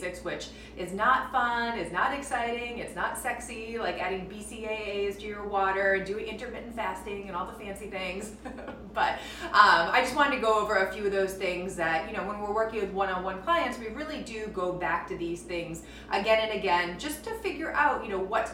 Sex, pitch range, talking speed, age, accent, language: female, 175-220 Hz, 205 wpm, 30-49, American, English